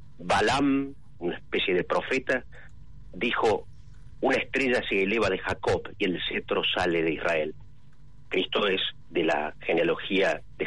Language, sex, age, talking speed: Spanish, male, 40-59, 135 wpm